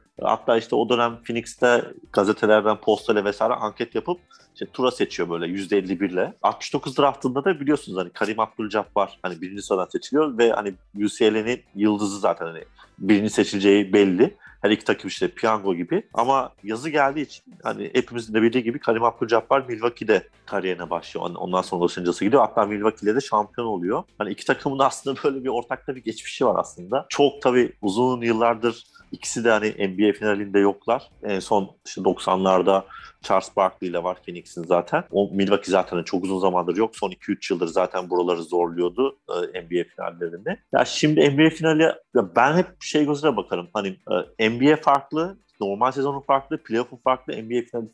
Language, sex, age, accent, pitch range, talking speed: Turkish, male, 40-59, native, 100-135 Hz, 170 wpm